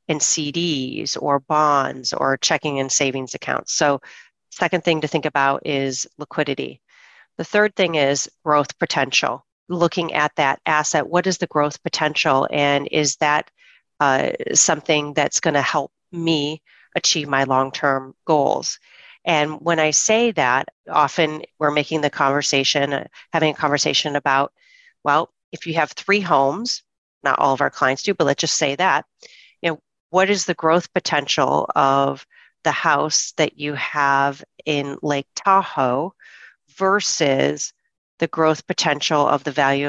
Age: 40-59